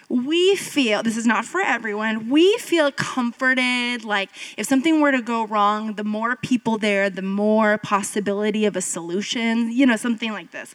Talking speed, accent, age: 180 wpm, American, 20-39